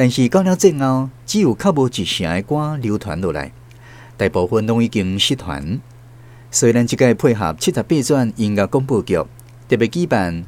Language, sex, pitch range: Chinese, male, 105-135 Hz